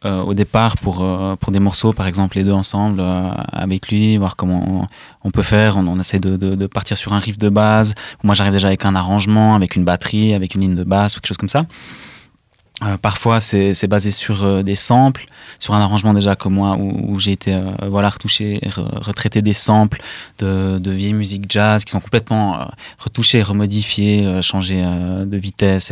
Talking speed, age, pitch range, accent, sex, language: 220 wpm, 20-39, 95-110 Hz, French, male, French